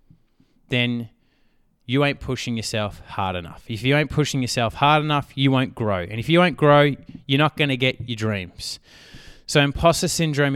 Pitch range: 115-145 Hz